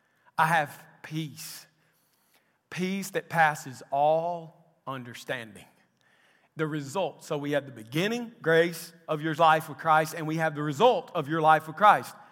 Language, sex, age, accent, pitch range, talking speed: English, male, 40-59, American, 155-230 Hz, 150 wpm